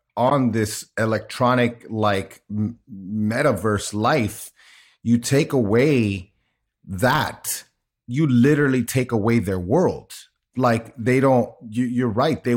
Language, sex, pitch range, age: English, male, 105-125 Hz, 30-49